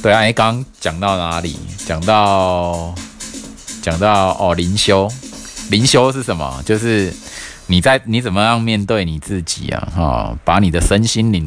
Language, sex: Chinese, male